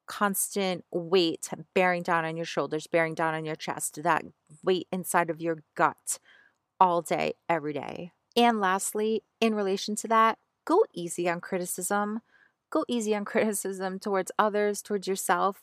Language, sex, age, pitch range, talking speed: English, female, 30-49, 175-210 Hz, 155 wpm